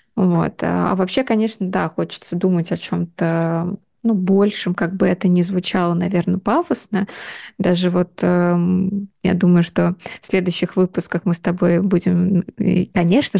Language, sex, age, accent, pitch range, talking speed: Russian, female, 20-39, native, 180-210 Hz, 145 wpm